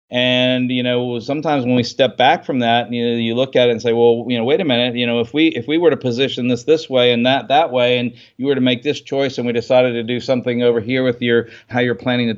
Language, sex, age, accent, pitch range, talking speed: English, male, 40-59, American, 120-135 Hz, 295 wpm